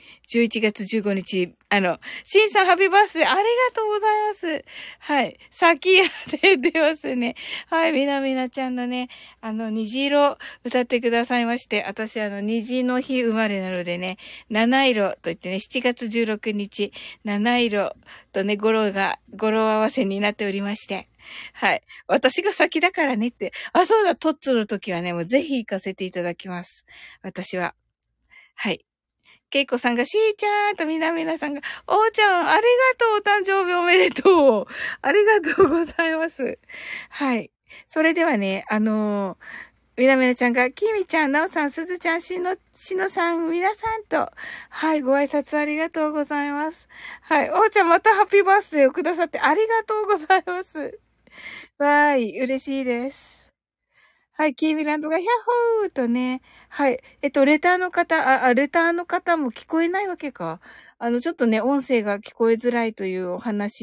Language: Japanese